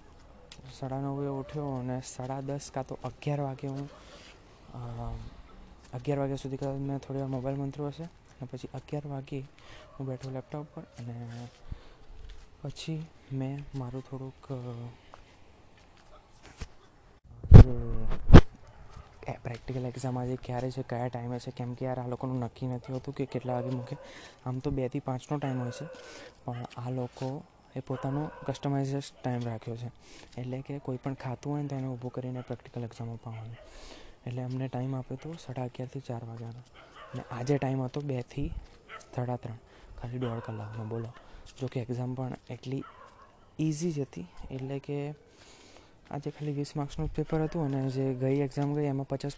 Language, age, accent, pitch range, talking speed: Gujarati, 20-39, native, 125-140 Hz, 120 wpm